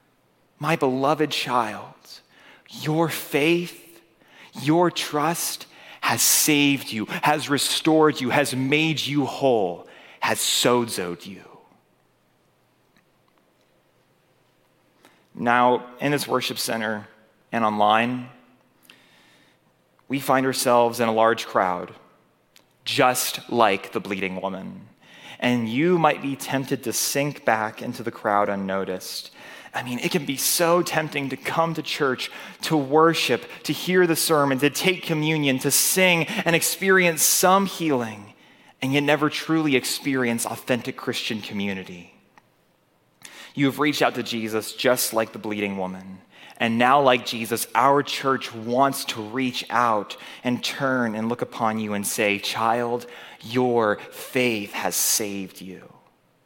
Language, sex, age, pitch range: English, male, 30-49, 115-150 Hz